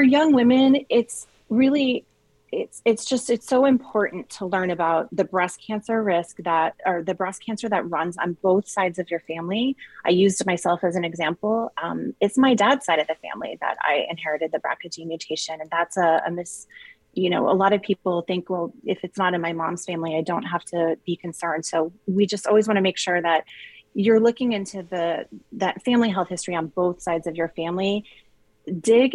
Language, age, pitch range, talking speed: English, 30-49, 170-205 Hz, 210 wpm